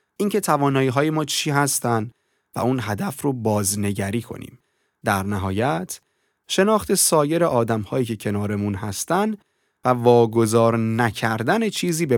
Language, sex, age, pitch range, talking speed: Persian, male, 30-49, 105-150 Hz, 120 wpm